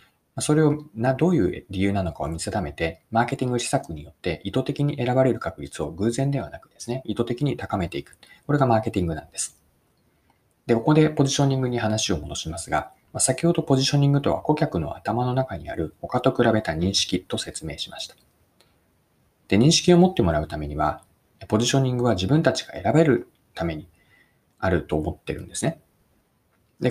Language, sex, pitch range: Japanese, male, 95-140 Hz